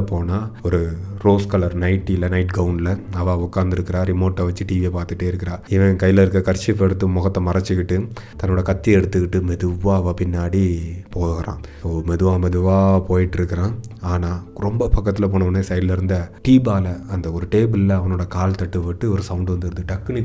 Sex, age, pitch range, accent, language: male, 30-49, 90-95 Hz, native, Tamil